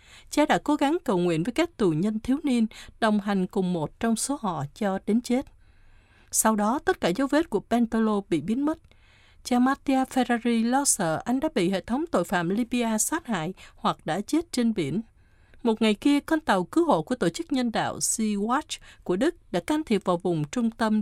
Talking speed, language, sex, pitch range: 215 wpm, Vietnamese, female, 190-255 Hz